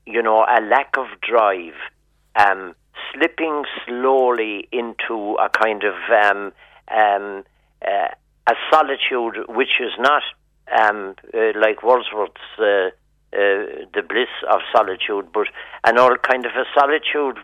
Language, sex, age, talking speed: English, male, 50-69, 125 wpm